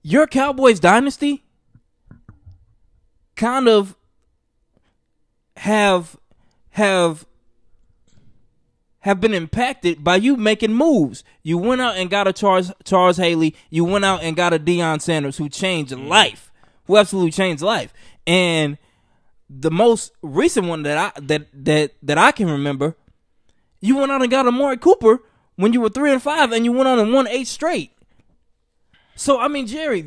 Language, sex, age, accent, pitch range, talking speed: English, male, 20-39, American, 150-235 Hz, 155 wpm